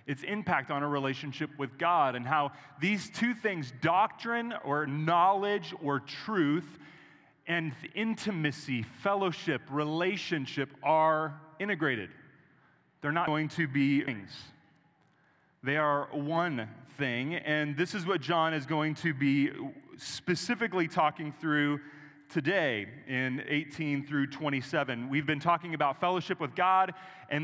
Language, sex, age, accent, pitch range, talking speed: English, male, 30-49, American, 140-175 Hz, 125 wpm